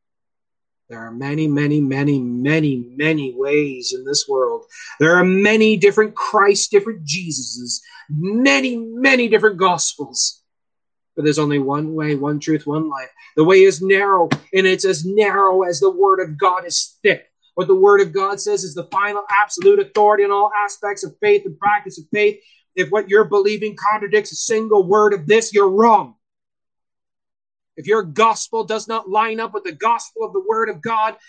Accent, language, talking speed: American, English, 180 wpm